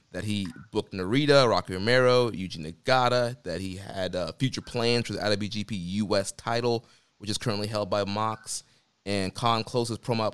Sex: male